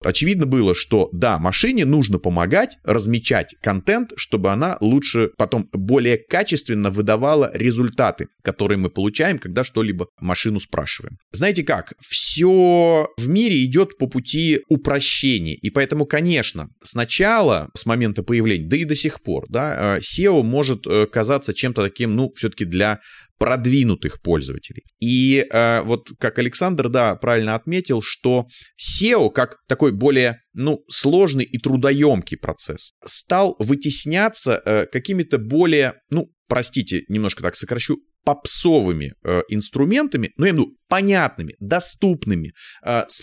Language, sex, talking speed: Russian, male, 130 wpm